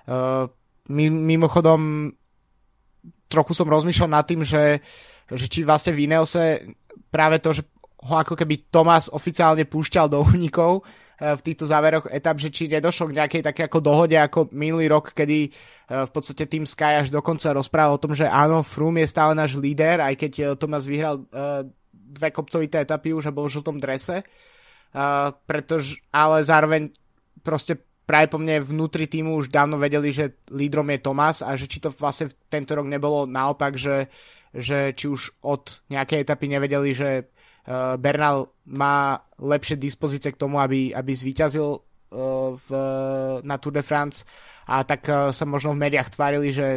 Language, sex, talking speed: Slovak, male, 165 wpm